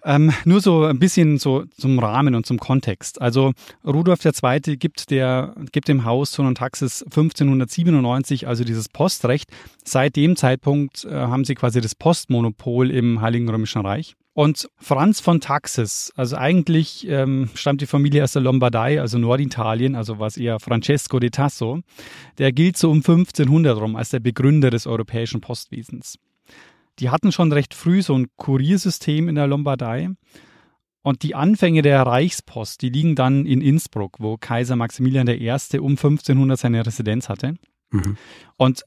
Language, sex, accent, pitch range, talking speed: German, male, German, 120-150 Hz, 160 wpm